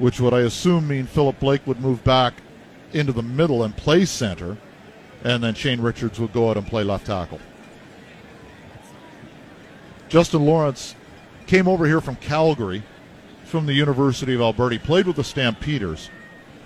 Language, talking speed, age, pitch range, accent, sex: English, 160 wpm, 50-69, 115-150 Hz, American, male